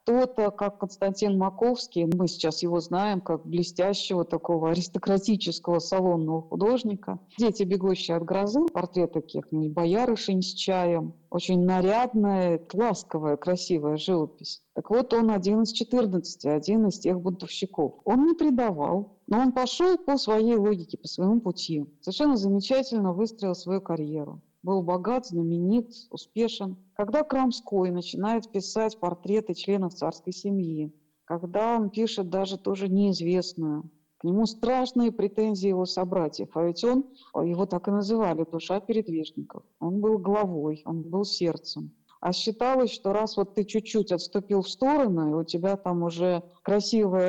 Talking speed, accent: 140 wpm, native